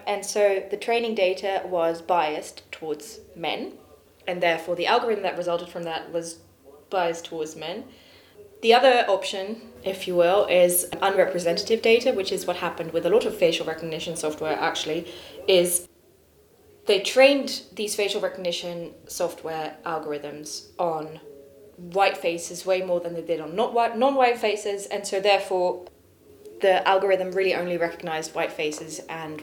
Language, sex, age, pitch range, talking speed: English, female, 20-39, 170-210 Hz, 150 wpm